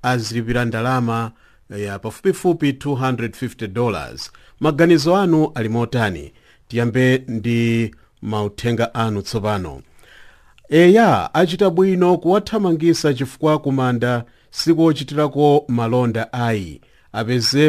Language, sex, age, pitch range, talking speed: English, male, 50-69, 115-150 Hz, 95 wpm